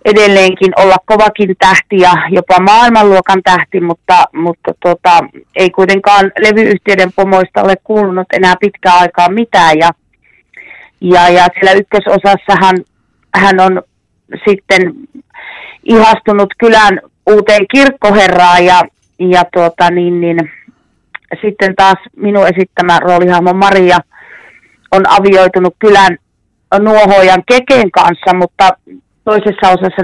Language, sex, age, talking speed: Finnish, female, 30-49, 105 wpm